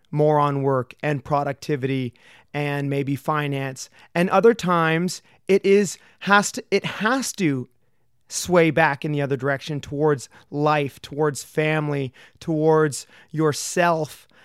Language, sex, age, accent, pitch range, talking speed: English, male, 30-49, American, 145-175 Hz, 125 wpm